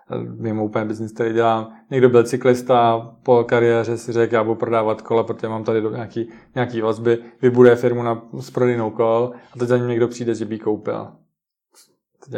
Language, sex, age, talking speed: Czech, male, 20-39, 175 wpm